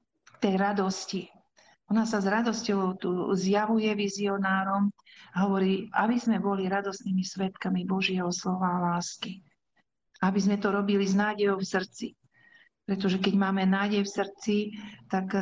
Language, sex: Slovak, female